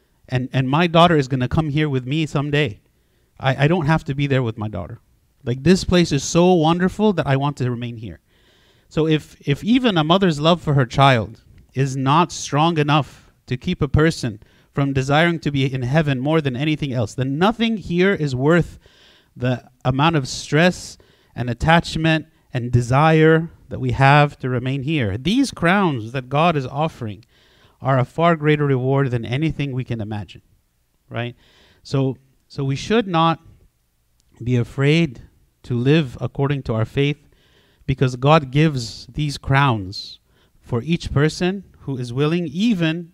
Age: 30-49